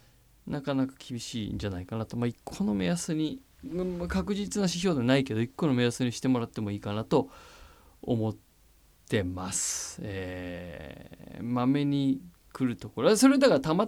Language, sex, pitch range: Japanese, male, 120-195 Hz